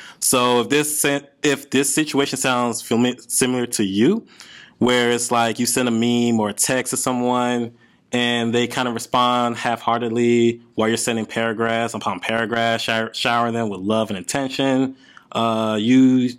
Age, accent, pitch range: 20-39, American, 115-130 Hz